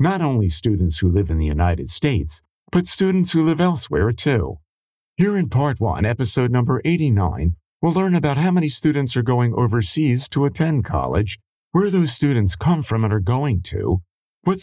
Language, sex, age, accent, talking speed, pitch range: English, male, 50-69, American, 180 wpm, 95-150 Hz